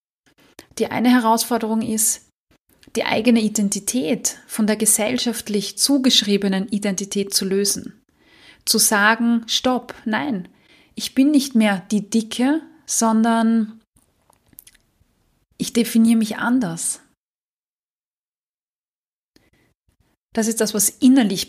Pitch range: 205-240 Hz